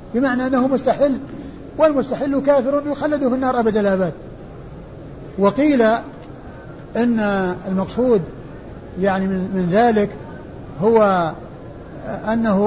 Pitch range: 190-235 Hz